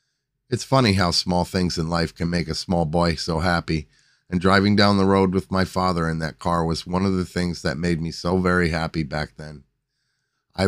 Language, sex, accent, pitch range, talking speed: English, male, American, 85-105 Hz, 220 wpm